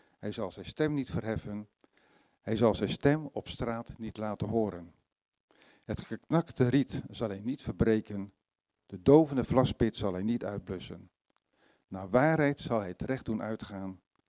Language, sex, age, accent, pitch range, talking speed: Dutch, male, 50-69, Dutch, 105-130 Hz, 155 wpm